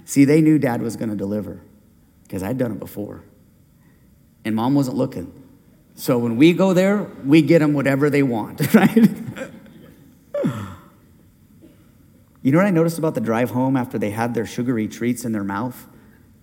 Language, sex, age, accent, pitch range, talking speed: English, male, 40-59, American, 145-235 Hz, 170 wpm